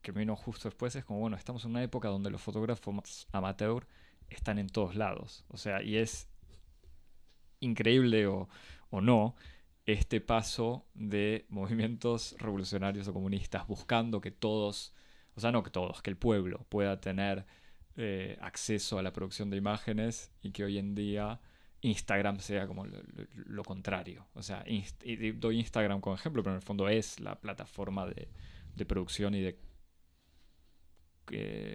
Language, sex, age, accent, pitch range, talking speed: Spanish, male, 20-39, Argentinian, 95-110 Hz, 165 wpm